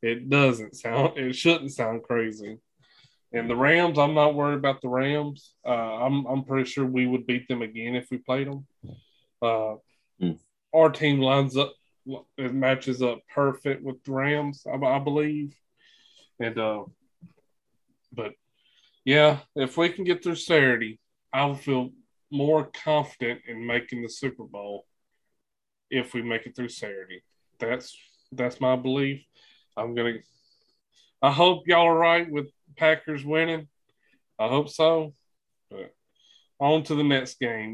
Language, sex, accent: English, male, American